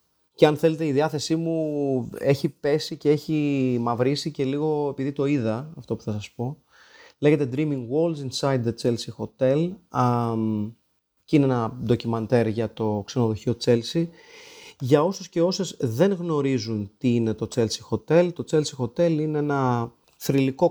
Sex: male